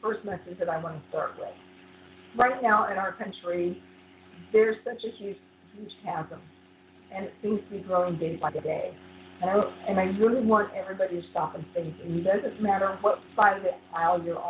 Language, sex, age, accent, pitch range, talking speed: English, female, 50-69, American, 175-220 Hz, 205 wpm